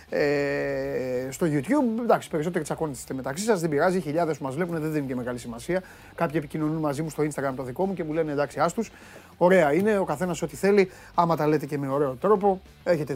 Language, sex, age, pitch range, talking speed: Greek, male, 30-49, 145-200 Hz, 210 wpm